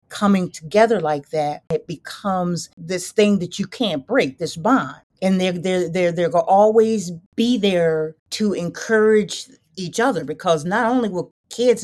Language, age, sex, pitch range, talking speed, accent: English, 40-59, female, 160-190 Hz, 160 wpm, American